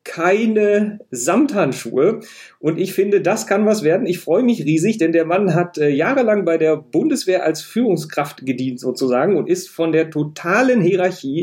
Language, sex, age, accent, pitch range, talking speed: German, male, 40-59, German, 140-185 Hz, 170 wpm